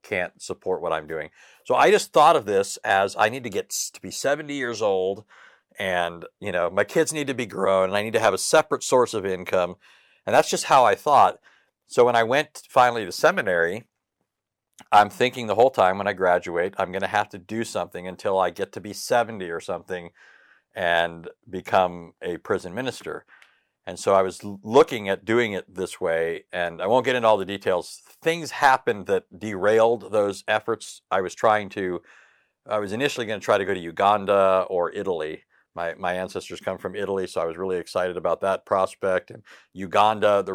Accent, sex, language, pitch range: American, male, English, 95-115 Hz